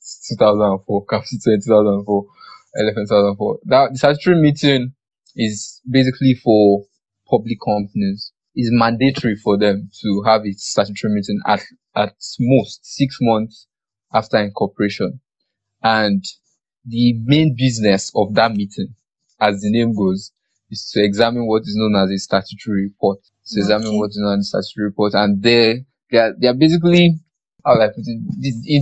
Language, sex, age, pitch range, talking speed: English, male, 20-39, 105-130 Hz, 145 wpm